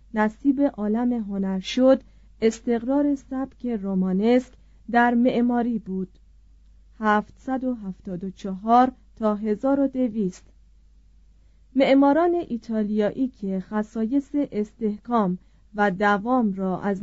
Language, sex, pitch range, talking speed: Persian, female, 205-255 Hz, 80 wpm